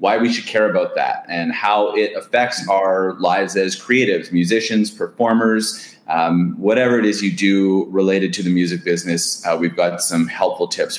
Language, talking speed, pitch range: English, 180 wpm, 100-130 Hz